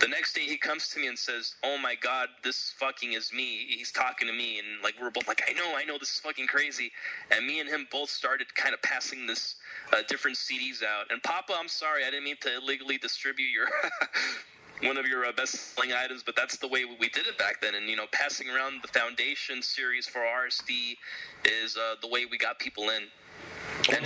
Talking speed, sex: 230 wpm, male